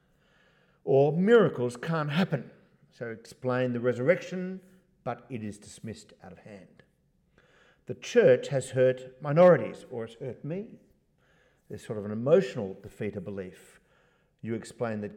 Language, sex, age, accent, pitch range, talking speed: English, male, 50-69, Australian, 105-135 Hz, 135 wpm